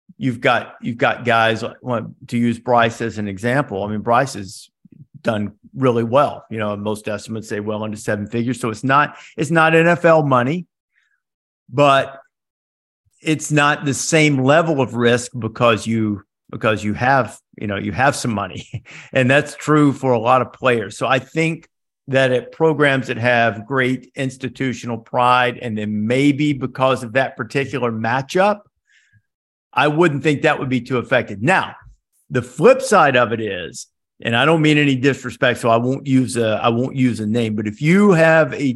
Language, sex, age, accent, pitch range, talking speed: English, male, 50-69, American, 115-140 Hz, 180 wpm